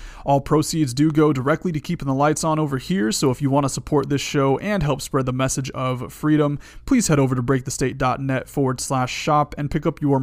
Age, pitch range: 30-49, 135-165 Hz